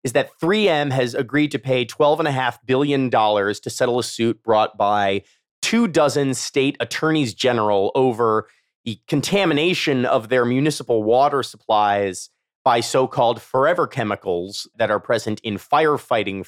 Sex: male